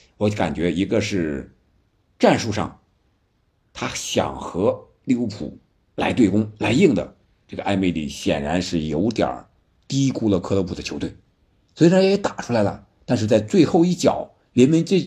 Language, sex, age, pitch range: Chinese, male, 50-69, 90-110 Hz